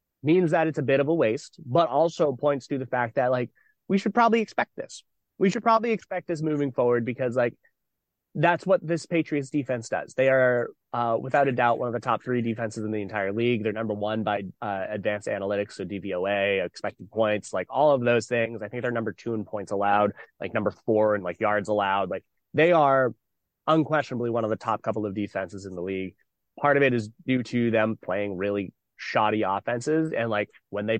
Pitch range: 110-145 Hz